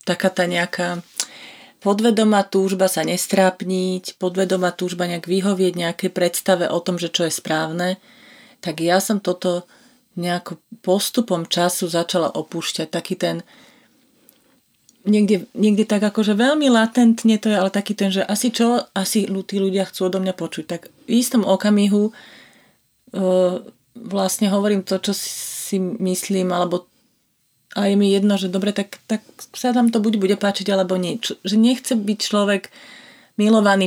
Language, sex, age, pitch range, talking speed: Slovak, female, 30-49, 180-220 Hz, 150 wpm